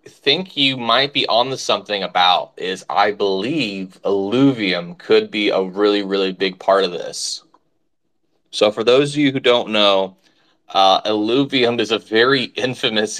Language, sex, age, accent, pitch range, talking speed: English, male, 20-39, American, 95-115 Hz, 160 wpm